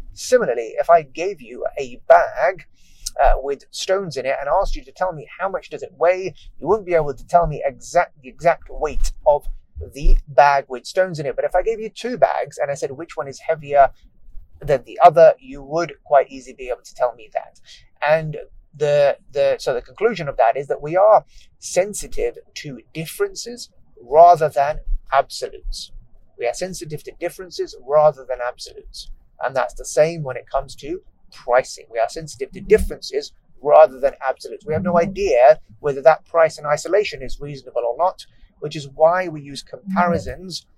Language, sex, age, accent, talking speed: English, male, 30-49, British, 190 wpm